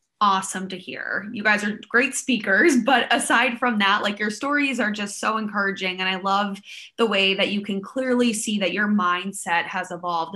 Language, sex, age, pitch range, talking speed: English, female, 20-39, 190-230 Hz, 195 wpm